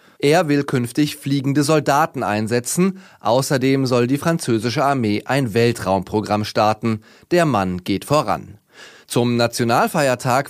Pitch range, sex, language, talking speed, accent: 115-145 Hz, male, German, 115 wpm, German